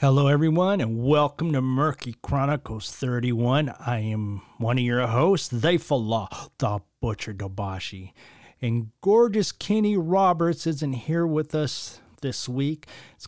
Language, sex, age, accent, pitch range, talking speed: English, male, 40-59, American, 120-160 Hz, 130 wpm